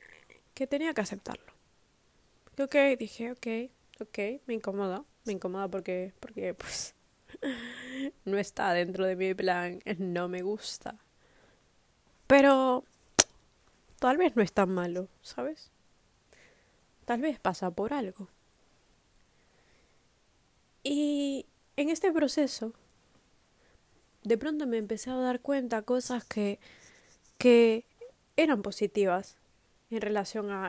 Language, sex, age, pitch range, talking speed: Spanish, female, 20-39, 200-250 Hz, 110 wpm